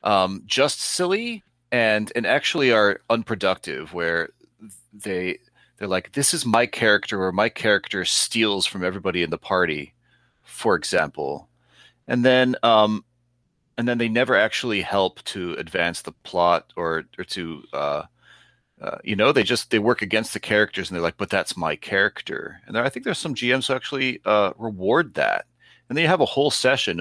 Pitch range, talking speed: 85-115 Hz, 175 wpm